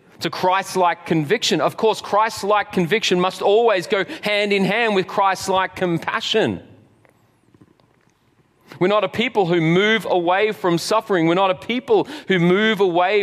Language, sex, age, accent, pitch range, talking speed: English, male, 30-49, Australian, 145-195 Hz, 145 wpm